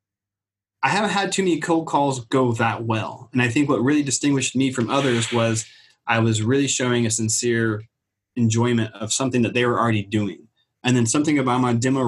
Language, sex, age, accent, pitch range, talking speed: English, male, 20-39, American, 115-135 Hz, 200 wpm